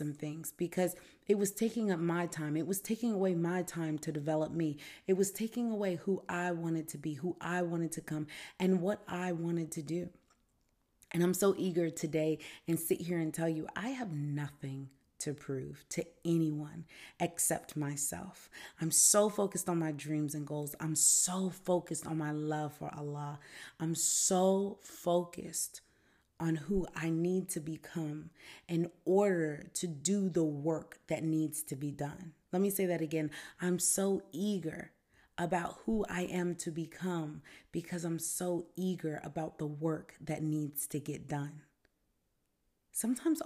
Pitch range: 155-180 Hz